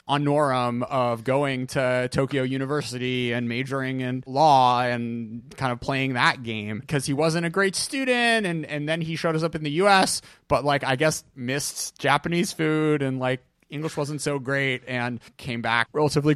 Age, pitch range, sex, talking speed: 30-49, 120-155 Hz, male, 180 wpm